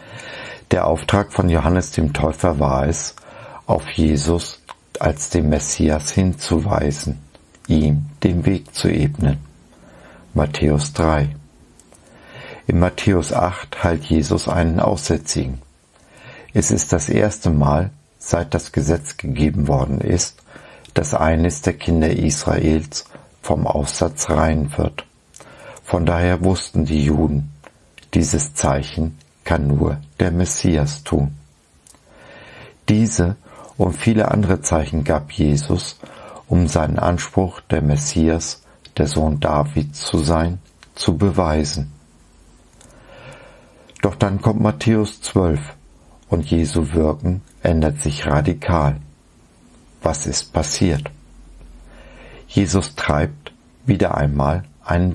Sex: male